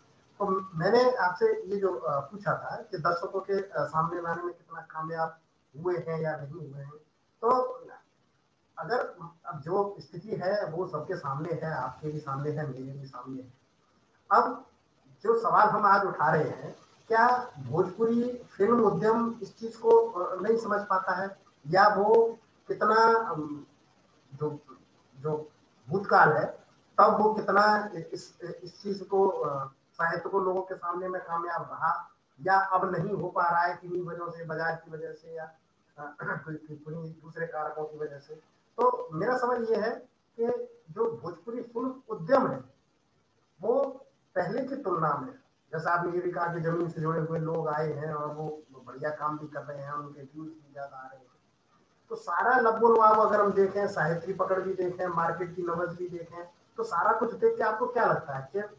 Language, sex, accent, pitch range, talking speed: Hindi, male, native, 155-205 Hz, 145 wpm